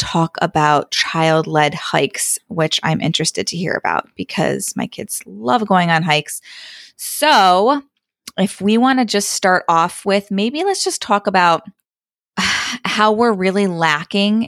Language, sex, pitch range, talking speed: English, female, 165-205 Hz, 150 wpm